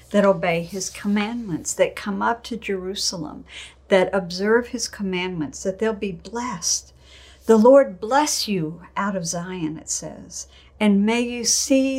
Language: English